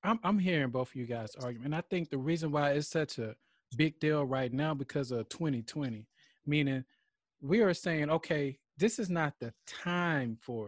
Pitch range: 145-185 Hz